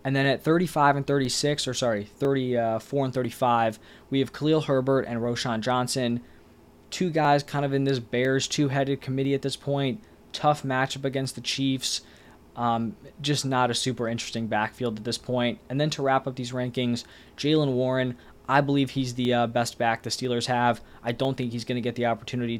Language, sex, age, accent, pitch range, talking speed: English, male, 20-39, American, 120-140 Hz, 190 wpm